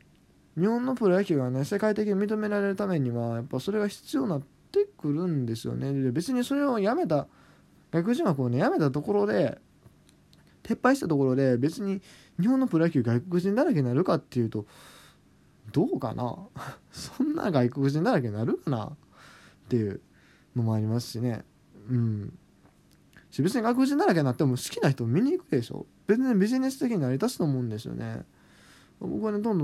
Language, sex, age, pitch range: Japanese, male, 20-39, 120-175 Hz